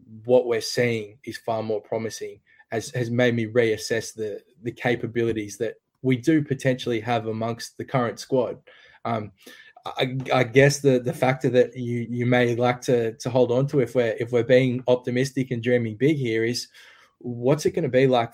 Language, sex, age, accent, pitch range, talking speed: English, male, 20-39, Australian, 110-130 Hz, 190 wpm